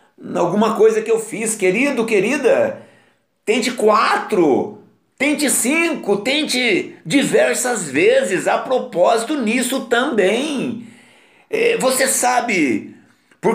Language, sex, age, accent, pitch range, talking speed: Portuguese, male, 60-79, Brazilian, 225-295 Hz, 95 wpm